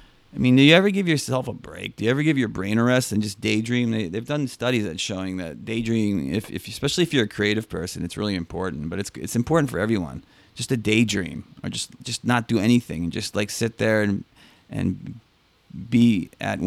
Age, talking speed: 30-49, 225 wpm